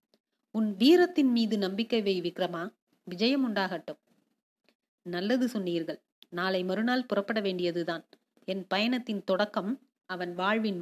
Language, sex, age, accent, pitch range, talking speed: Tamil, female, 30-49, native, 195-260 Hz, 105 wpm